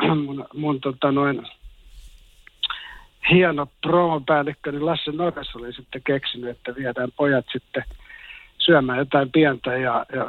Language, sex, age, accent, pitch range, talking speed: Finnish, male, 60-79, native, 125-155 Hz, 120 wpm